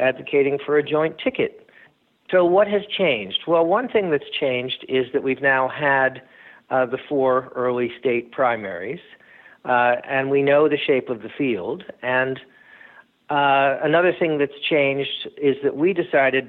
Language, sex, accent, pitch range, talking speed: English, male, American, 130-165 Hz, 160 wpm